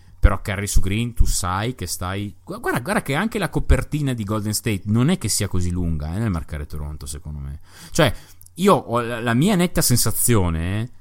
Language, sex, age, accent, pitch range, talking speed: Italian, male, 30-49, native, 90-120 Hz, 195 wpm